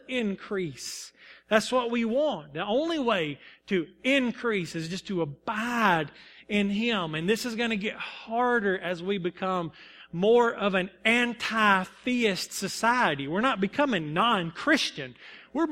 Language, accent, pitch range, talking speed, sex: English, American, 165-225 Hz, 135 wpm, male